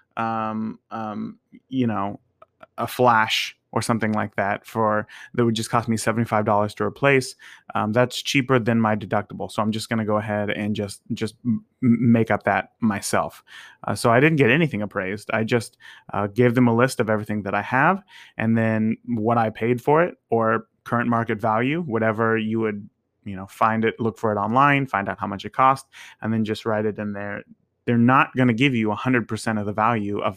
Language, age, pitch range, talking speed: English, 30-49, 105-125 Hz, 205 wpm